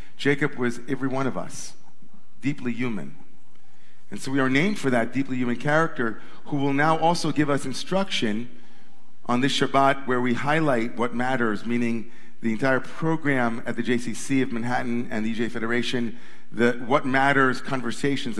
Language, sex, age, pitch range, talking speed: English, male, 50-69, 120-145 Hz, 165 wpm